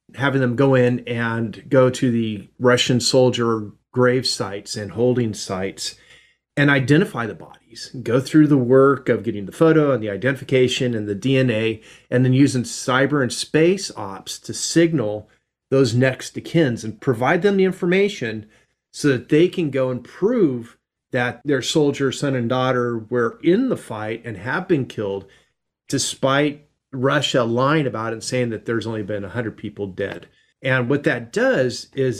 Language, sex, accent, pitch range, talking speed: English, male, American, 120-145 Hz, 170 wpm